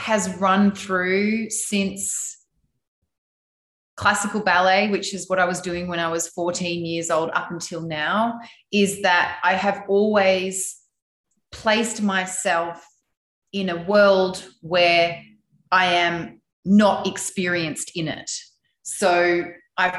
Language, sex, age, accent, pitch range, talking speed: English, female, 30-49, Australian, 165-190 Hz, 120 wpm